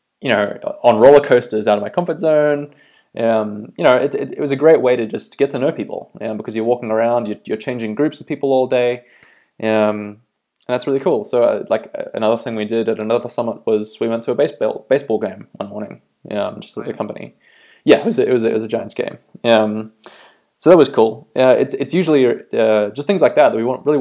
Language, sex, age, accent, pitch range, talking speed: English, male, 20-39, Australian, 110-135 Hz, 245 wpm